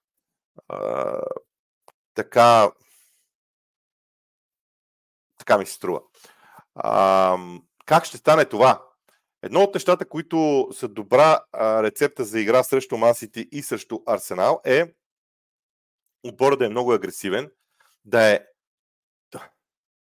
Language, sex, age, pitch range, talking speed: Bulgarian, male, 40-59, 120-170 Hz, 100 wpm